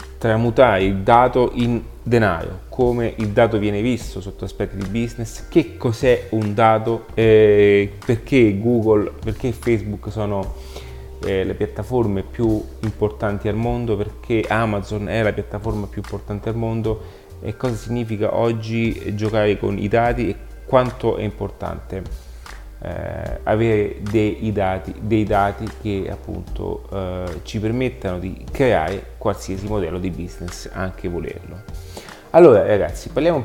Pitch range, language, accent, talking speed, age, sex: 95-110 Hz, Italian, native, 135 wpm, 30-49, male